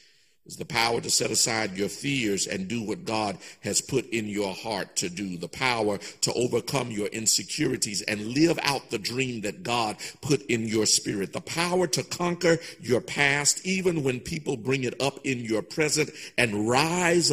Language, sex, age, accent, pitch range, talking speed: English, male, 50-69, American, 90-150 Hz, 185 wpm